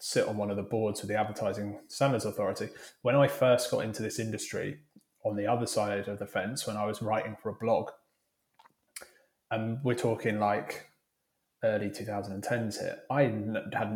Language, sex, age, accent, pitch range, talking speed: English, male, 20-39, British, 105-120 Hz, 175 wpm